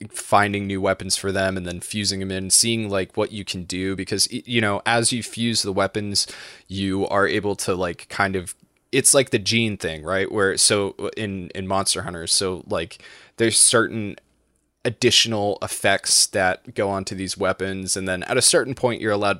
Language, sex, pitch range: English, male, 95-110 Hz